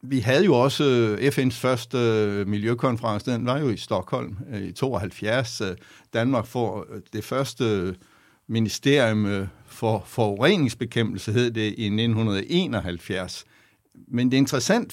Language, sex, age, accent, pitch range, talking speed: Danish, male, 60-79, native, 105-135 Hz, 115 wpm